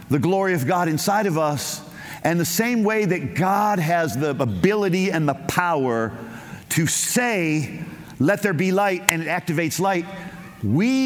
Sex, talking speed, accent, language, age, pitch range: male, 165 wpm, American, English, 50-69, 155-205 Hz